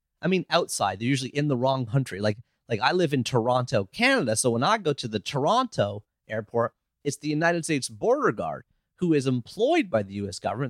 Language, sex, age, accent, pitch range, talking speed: English, male, 30-49, American, 110-155 Hz, 210 wpm